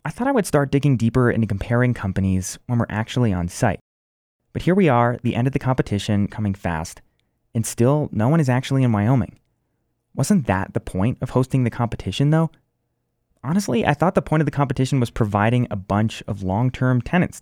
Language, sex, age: English, male, 20-39